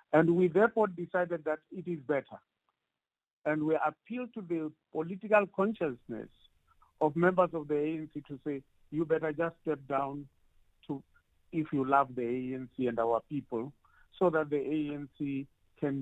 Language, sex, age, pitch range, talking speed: English, male, 50-69, 130-170 Hz, 155 wpm